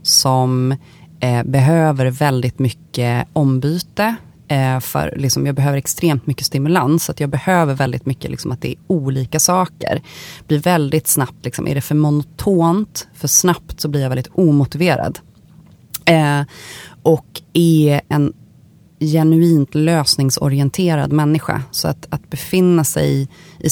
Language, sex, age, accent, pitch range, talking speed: Swedish, female, 30-49, native, 140-170 Hz, 140 wpm